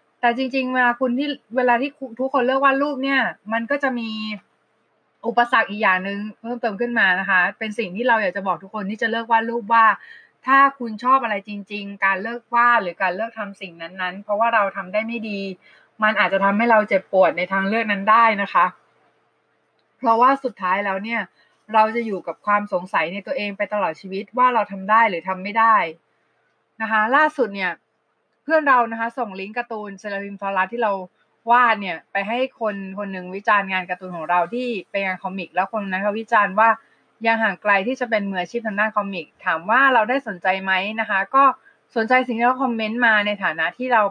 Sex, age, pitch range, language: female, 20-39, 195-240 Hz, Thai